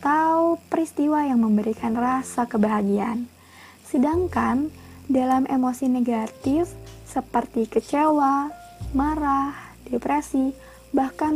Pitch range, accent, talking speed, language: 220-270 Hz, native, 80 wpm, Indonesian